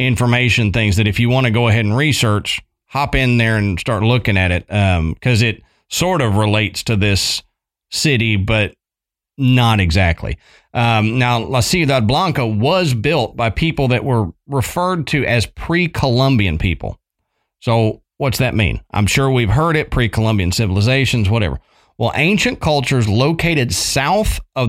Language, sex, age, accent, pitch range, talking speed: English, male, 40-59, American, 105-135 Hz, 160 wpm